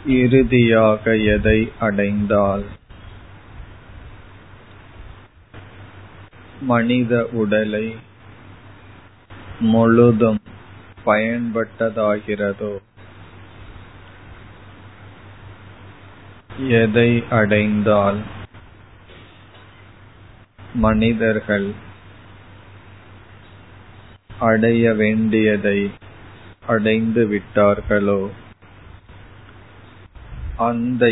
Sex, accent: male, native